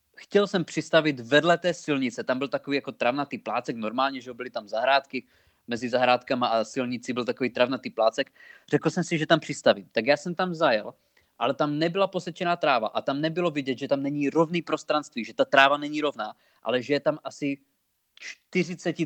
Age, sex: 20-39, male